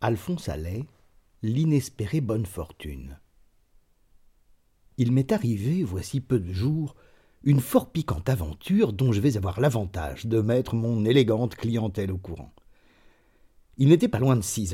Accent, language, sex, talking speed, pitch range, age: French, French, male, 140 wpm, 105-135 Hz, 50-69